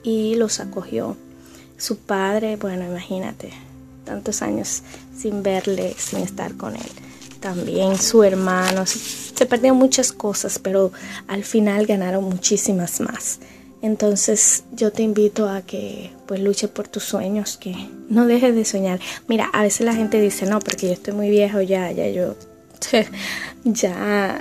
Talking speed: 150 wpm